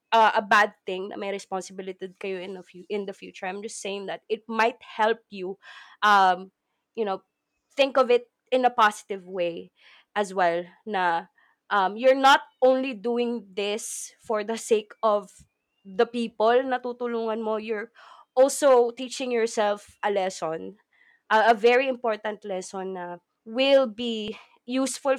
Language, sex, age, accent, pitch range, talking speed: Filipino, female, 20-39, native, 200-245 Hz, 150 wpm